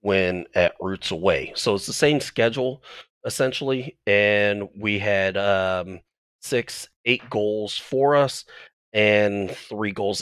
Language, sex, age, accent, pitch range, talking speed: English, male, 30-49, American, 95-125 Hz, 130 wpm